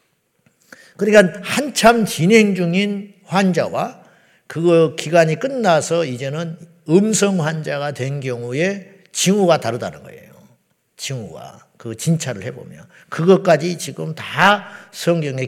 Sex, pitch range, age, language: male, 140-190 Hz, 50-69, Korean